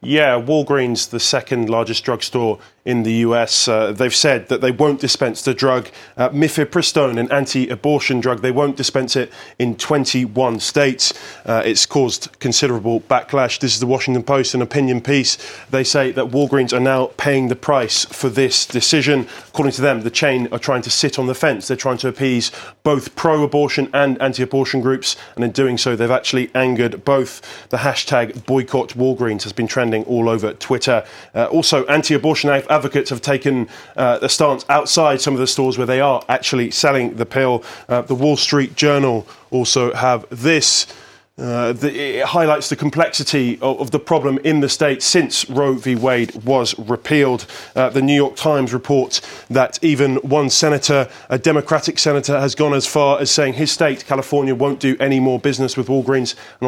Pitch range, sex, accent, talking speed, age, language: 125-140 Hz, male, British, 180 wpm, 20-39, English